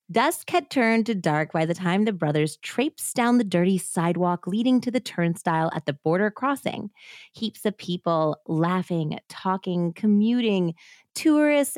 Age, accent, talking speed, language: 30-49, American, 155 wpm, English